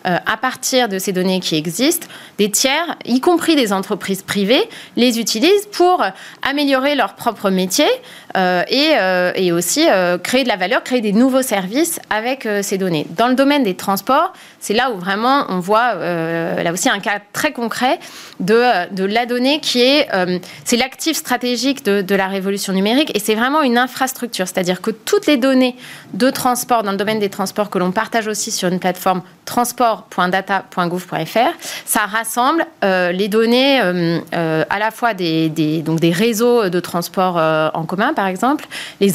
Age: 20-39